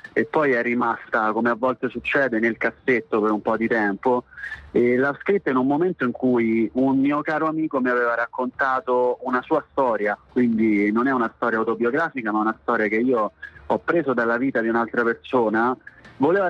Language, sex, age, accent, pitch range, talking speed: Italian, male, 30-49, native, 115-140 Hz, 190 wpm